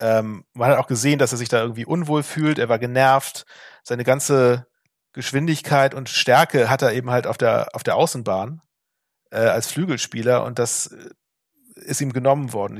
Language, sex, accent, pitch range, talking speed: German, male, German, 120-145 Hz, 175 wpm